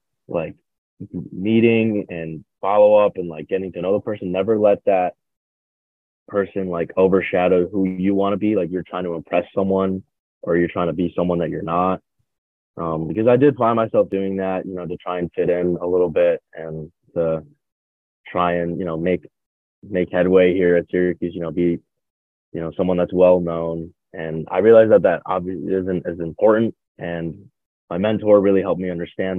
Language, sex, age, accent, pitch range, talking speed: English, male, 20-39, American, 85-95 Hz, 190 wpm